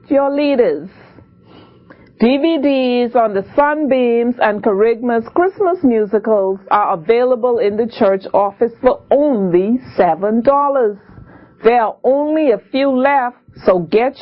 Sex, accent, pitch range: female, American, 210-280 Hz